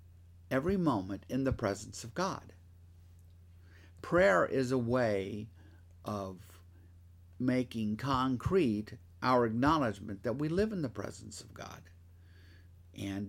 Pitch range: 85-130 Hz